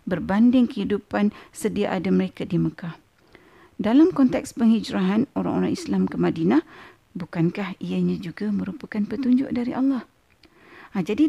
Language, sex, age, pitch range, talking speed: Malay, female, 50-69, 200-270 Hz, 115 wpm